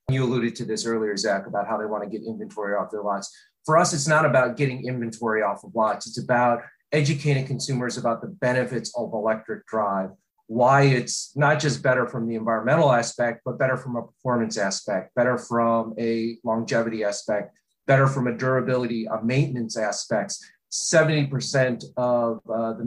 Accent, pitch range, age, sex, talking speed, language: American, 115-140 Hz, 30-49, male, 175 wpm, English